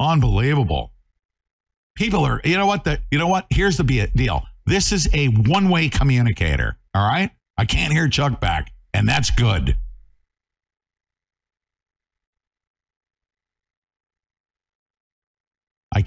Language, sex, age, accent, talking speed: English, male, 50-69, American, 105 wpm